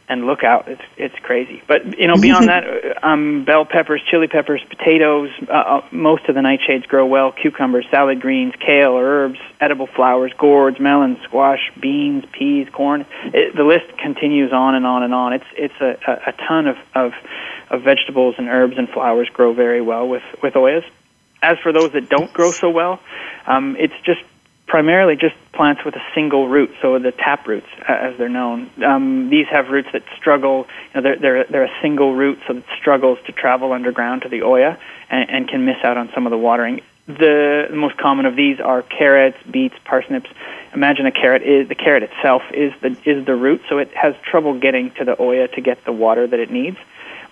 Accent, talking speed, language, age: American, 205 wpm, English, 30-49